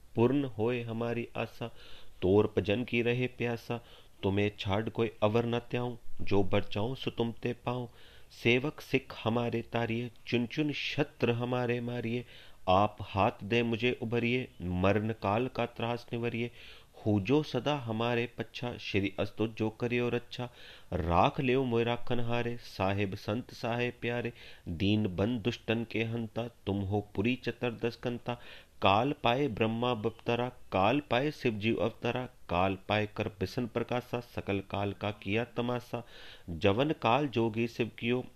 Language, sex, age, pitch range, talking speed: Punjabi, male, 40-59, 105-120 Hz, 135 wpm